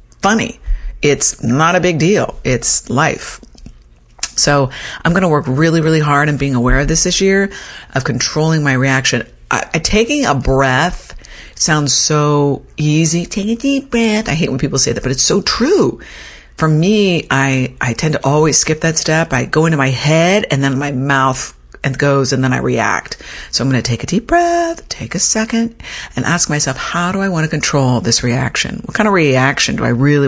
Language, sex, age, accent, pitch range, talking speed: English, female, 50-69, American, 125-160 Hz, 200 wpm